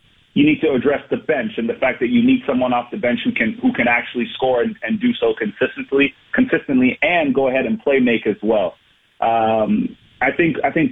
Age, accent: 30-49, American